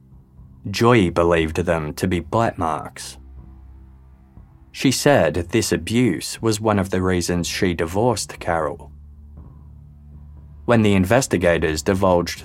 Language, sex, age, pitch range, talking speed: English, male, 20-39, 75-105 Hz, 110 wpm